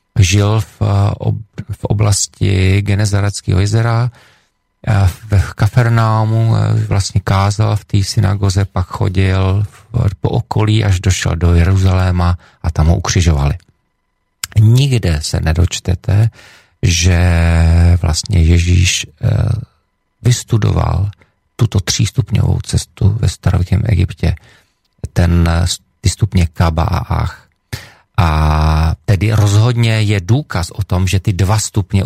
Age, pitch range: 40-59, 90-110 Hz